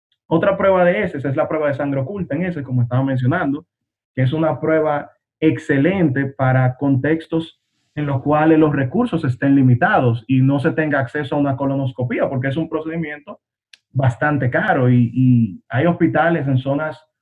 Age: 20-39